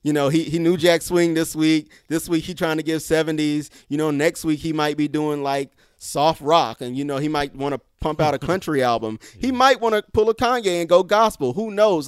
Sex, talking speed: male, 255 wpm